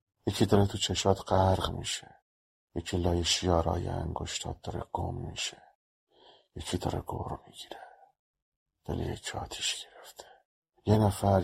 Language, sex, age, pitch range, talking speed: Persian, male, 50-69, 90-100 Hz, 120 wpm